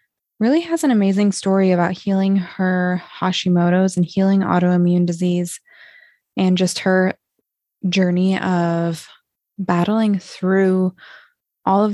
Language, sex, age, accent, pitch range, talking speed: English, female, 20-39, American, 175-195 Hz, 110 wpm